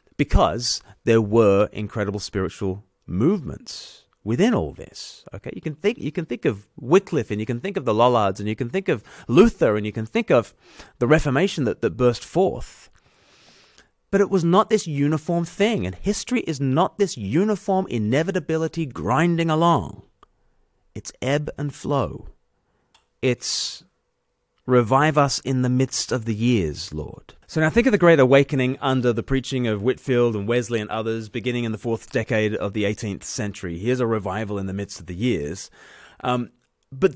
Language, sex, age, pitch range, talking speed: English, male, 30-49, 115-160 Hz, 175 wpm